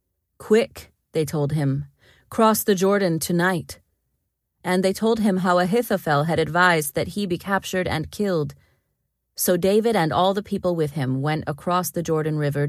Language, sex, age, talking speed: English, female, 30-49, 165 wpm